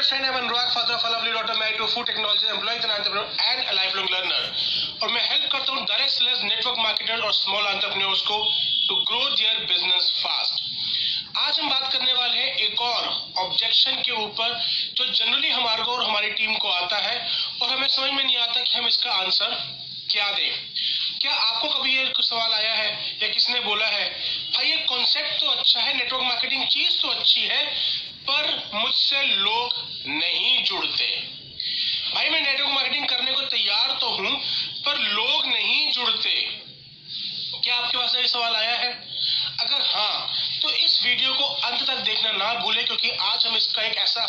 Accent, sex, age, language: native, male, 30-49, Hindi